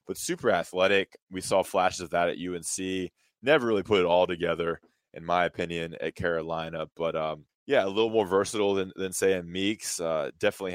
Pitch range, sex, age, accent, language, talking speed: 85-95 Hz, male, 20-39, American, English, 195 wpm